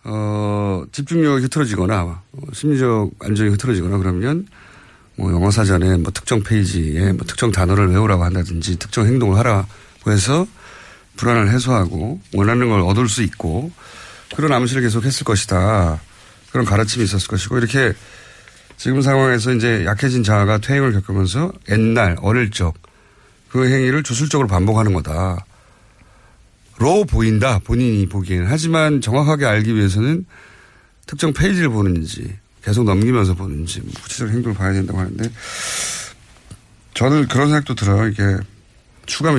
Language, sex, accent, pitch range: Korean, male, native, 95-125 Hz